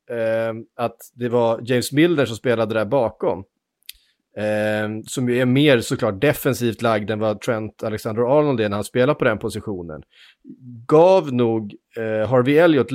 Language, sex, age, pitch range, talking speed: Swedish, male, 30-49, 105-130 Hz, 150 wpm